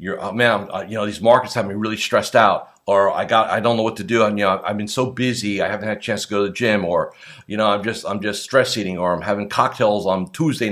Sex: male